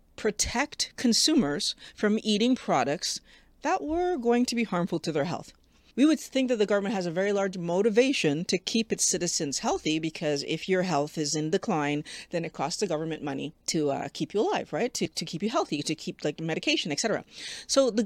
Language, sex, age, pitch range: English, female, 40-59, 155-210 Hz